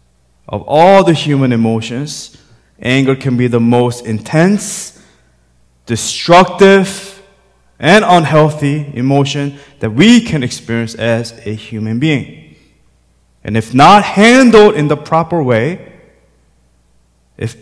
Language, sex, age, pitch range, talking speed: English, male, 20-39, 105-180 Hz, 110 wpm